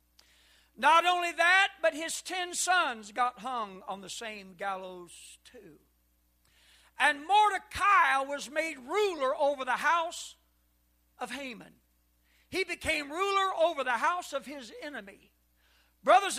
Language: English